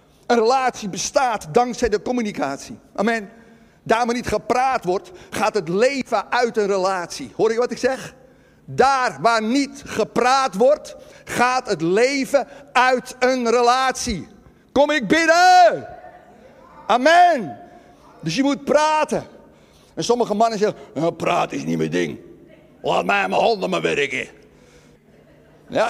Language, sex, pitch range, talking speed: Dutch, male, 195-255 Hz, 135 wpm